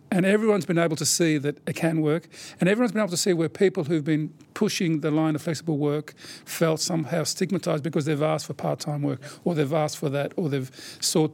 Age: 50-69